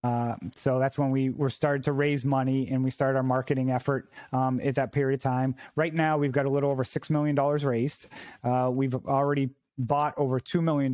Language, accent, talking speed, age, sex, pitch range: English, American, 235 wpm, 30-49, male, 130-140 Hz